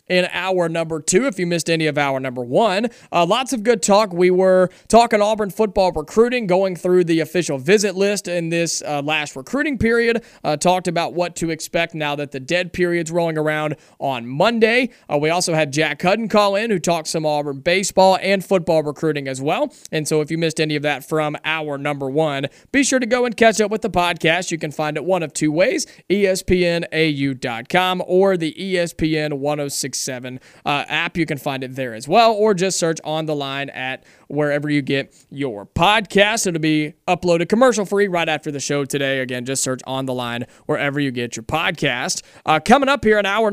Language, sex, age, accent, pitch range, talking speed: English, male, 30-49, American, 150-200 Hz, 210 wpm